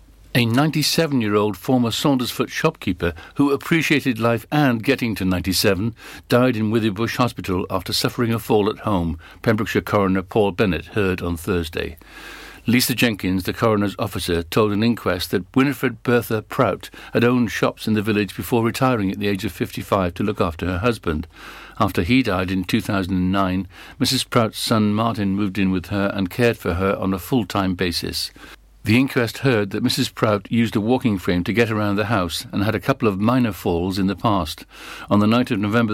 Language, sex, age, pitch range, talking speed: English, male, 60-79, 95-120 Hz, 185 wpm